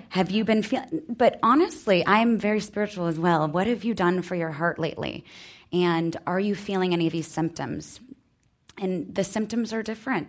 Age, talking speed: 20-39, 185 wpm